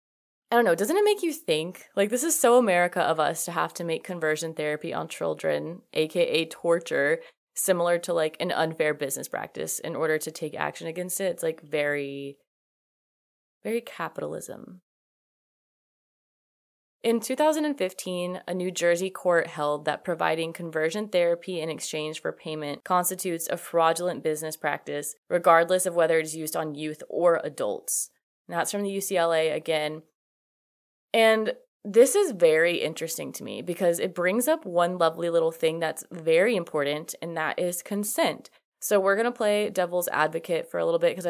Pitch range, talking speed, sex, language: 160-210 Hz, 165 wpm, female, English